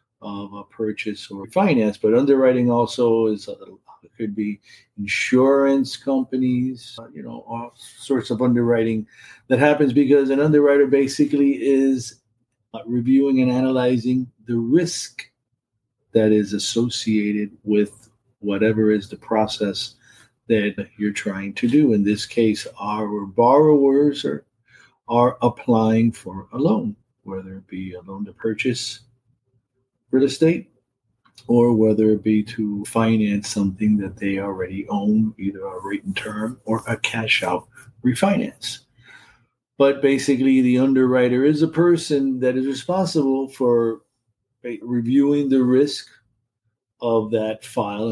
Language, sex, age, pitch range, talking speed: English, male, 50-69, 110-135 Hz, 130 wpm